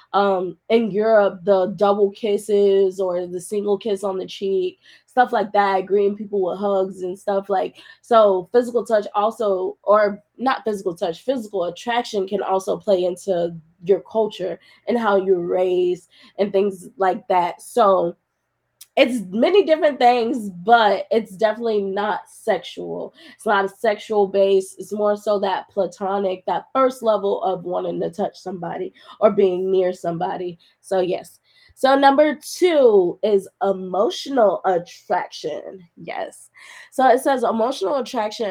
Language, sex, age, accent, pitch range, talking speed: English, female, 20-39, American, 185-230 Hz, 145 wpm